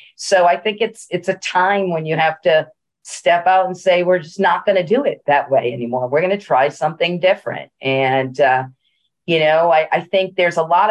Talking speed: 225 wpm